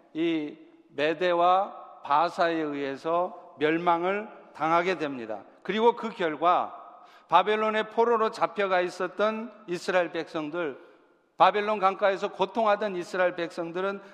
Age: 50-69